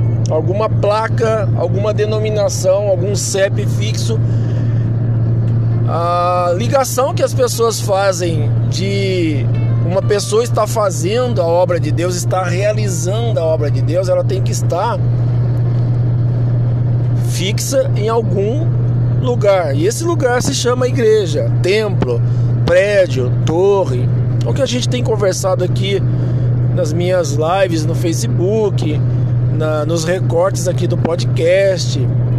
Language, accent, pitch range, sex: Portuguese, Brazilian, 115-125 Hz, male